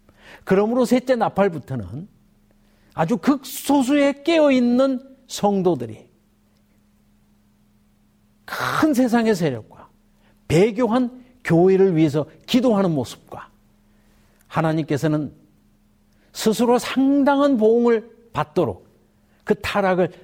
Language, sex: Korean, male